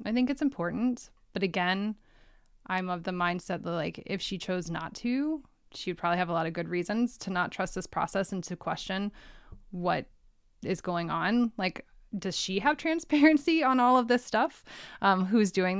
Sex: female